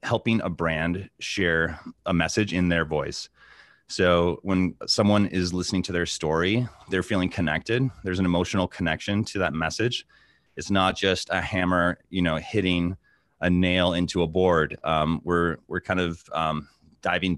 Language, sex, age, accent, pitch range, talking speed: English, male, 30-49, American, 80-95 Hz, 160 wpm